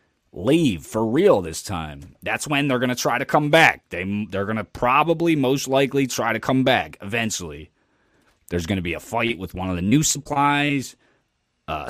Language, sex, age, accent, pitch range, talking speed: English, male, 20-39, American, 95-150 Hz, 200 wpm